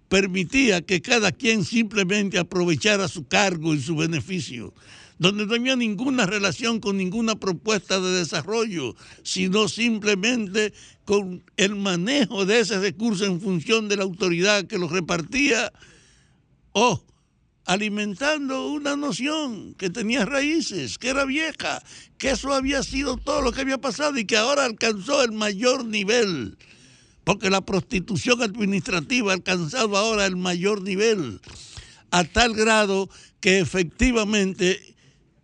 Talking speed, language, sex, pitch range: 135 wpm, Spanish, male, 170-220 Hz